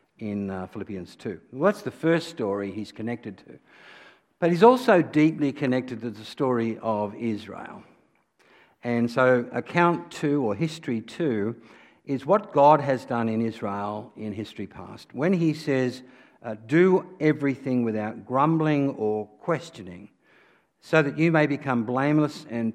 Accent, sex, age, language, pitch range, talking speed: Australian, male, 60-79, English, 105-140 Hz, 150 wpm